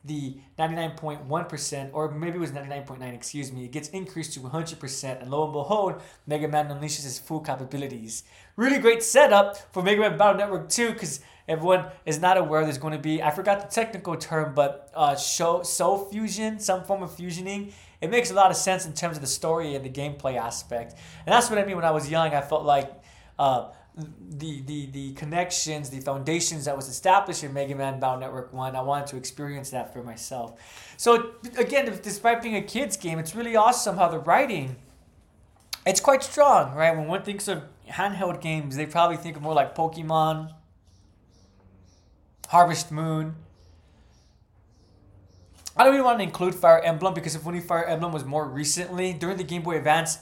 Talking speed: 190 wpm